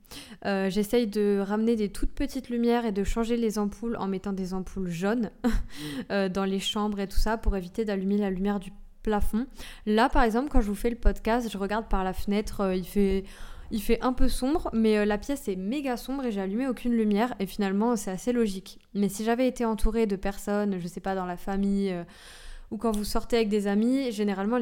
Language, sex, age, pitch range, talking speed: French, female, 20-39, 195-235 Hz, 225 wpm